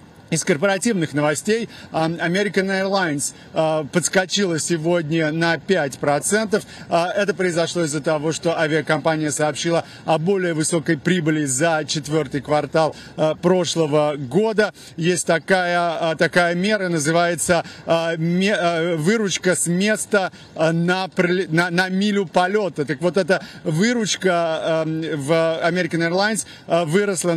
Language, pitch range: Russian, 165-190 Hz